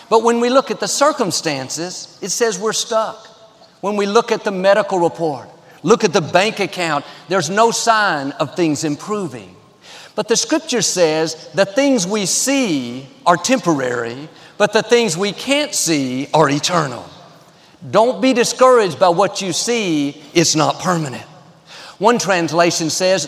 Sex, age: male, 50-69